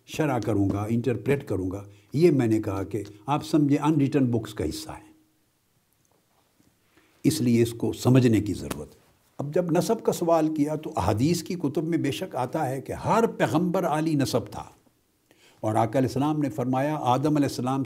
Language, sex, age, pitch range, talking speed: Urdu, male, 60-79, 115-160 Hz, 180 wpm